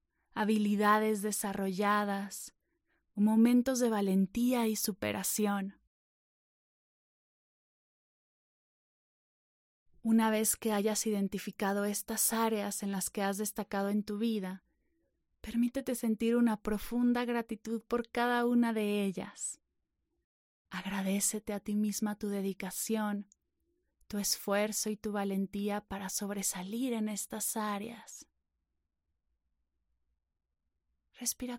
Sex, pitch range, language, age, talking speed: female, 195-230 Hz, Spanish, 20-39, 95 wpm